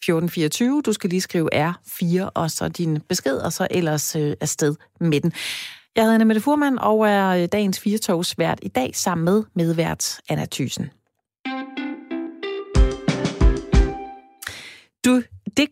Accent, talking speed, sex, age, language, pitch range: native, 125 wpm, female, 30-49, Danish, 165-220 Hz